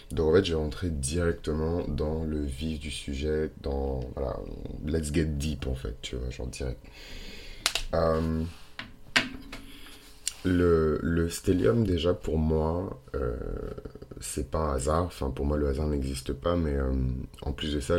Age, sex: 30-49, male